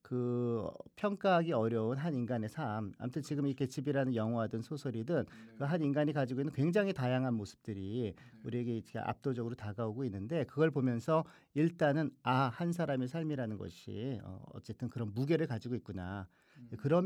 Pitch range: 115-155 Hz